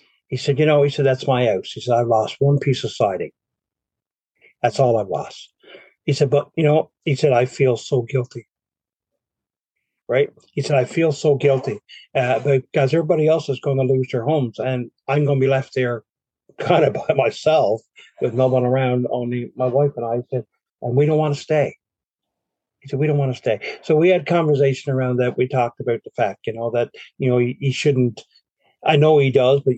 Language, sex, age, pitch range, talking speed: English, male, 50-69, 115-140 Hz, 215 wpm